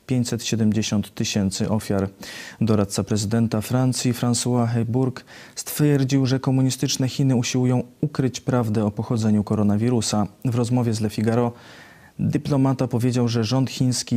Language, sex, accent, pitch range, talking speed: Polish, male, native, 110-125 Hz, 120 wpm